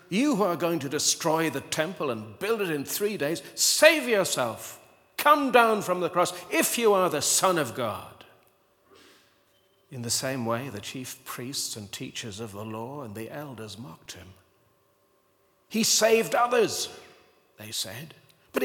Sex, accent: male, British